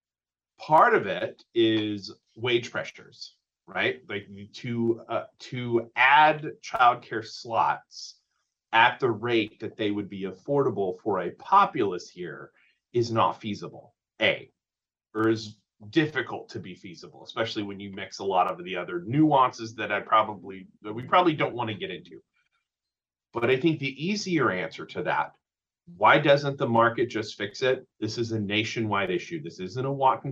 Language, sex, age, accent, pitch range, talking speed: English, male, 30-49, American, 100-135 Hz, 160 wpm